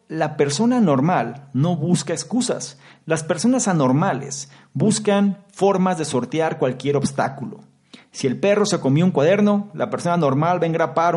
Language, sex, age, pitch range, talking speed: Spanish, male, 40-59, 135-180 Hz, 150 wpm